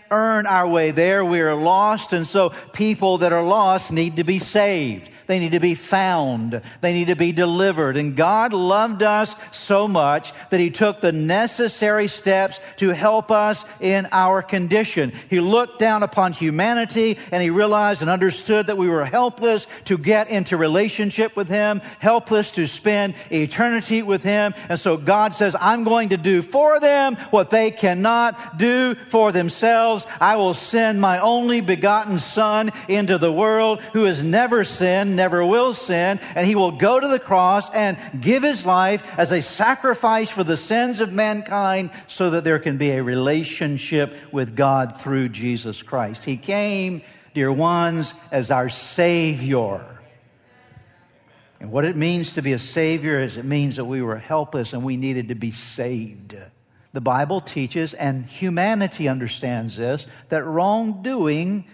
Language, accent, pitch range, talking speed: English, American, 155-215 Hz, 165 wpm